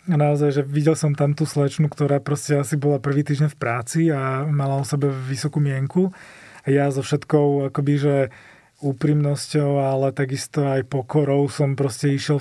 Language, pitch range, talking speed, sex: Slovak, 135-150 Hz, 170 wpm, male